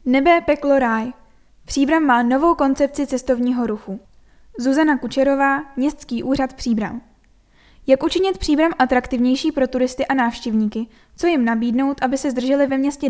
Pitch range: 245-295 Hz